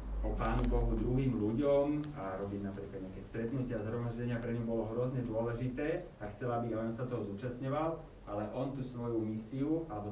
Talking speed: 180 wpm